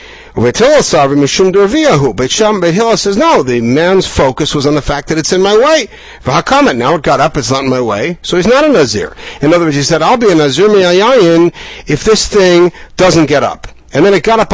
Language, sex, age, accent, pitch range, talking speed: English, male, 60-79, American, 135-195 Hz, 200 wpm